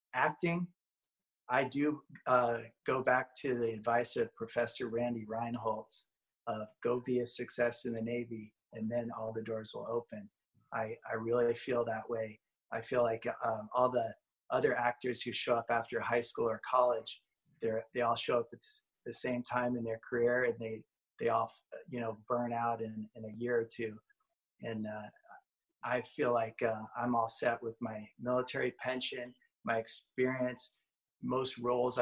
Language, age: English, 30-49